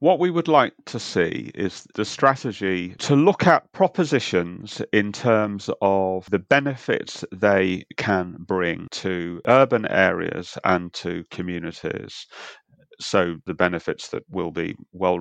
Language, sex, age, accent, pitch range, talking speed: English, male, 40-59, British, 90-120 Hz, 135 wpm